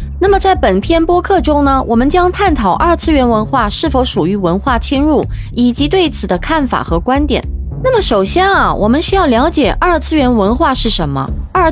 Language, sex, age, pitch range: Chinese, female, 20-39, 220-330 Hz